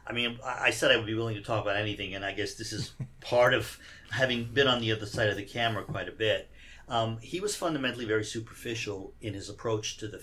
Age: 50-69